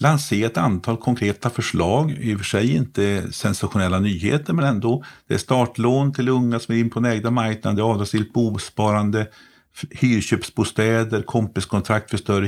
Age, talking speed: 50-69, 150 wpm